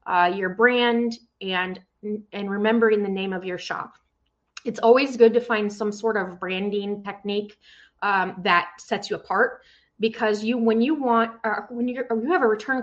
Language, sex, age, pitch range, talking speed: English, female, 20-39, 190-230 Hz, 175 wpm